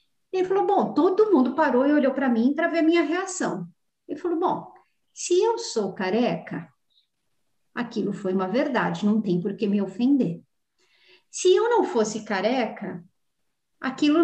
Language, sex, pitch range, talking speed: Portuguese, female, 210-310 Hz, 160 wpm